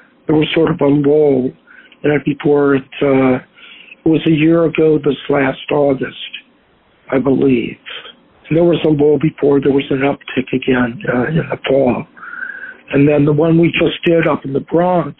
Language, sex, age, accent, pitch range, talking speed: English, male, 60-79, American, 145-170 Hz, 185 wpm